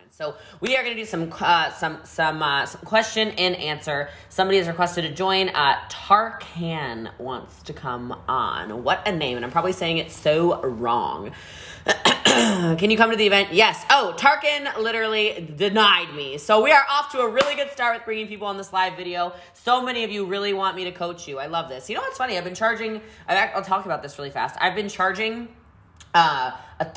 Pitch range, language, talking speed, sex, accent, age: 150-215 Hz, English, 210 wpm, female, American, 20-39